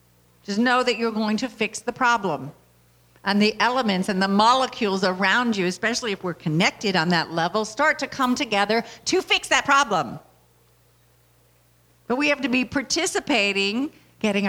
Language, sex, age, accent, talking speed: English, female, 50-69, American, 160 wpm